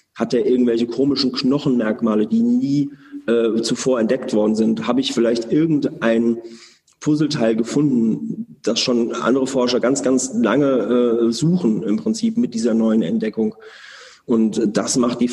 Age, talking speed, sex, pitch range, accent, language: 40-59, 145 wpm, male, 115-145 Hz, German, German